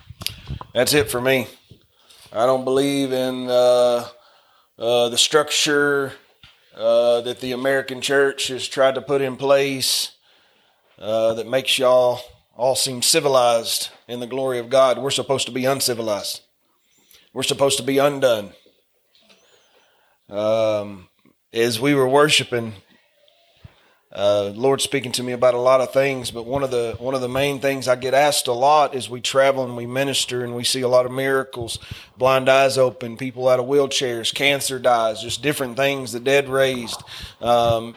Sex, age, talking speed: male, 30-49, 165 wpm